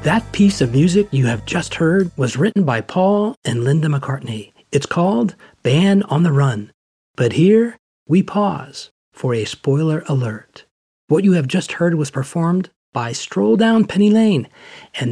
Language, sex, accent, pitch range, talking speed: English, male, American, 135-185 Hz, 165 wpm